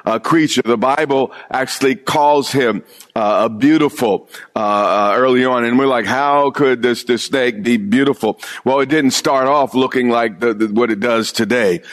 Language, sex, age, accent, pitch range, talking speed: English, male, 50-69, American, 125-155 Hz, 185 wpm